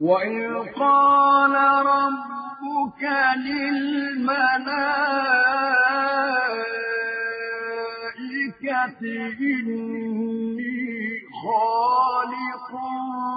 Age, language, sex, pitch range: 50-69, Arabic, male, 225-265 Hz